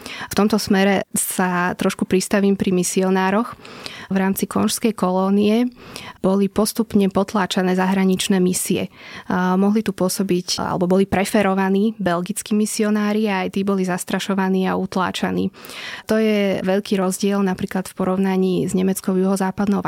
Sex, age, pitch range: female, 20-39, 185-200 Hz